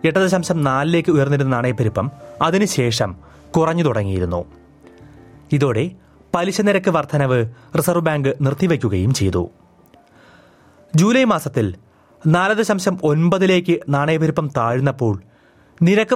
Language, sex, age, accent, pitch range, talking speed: Malayalam, male, 30-49, native, 120-170 Hz, 90 wpm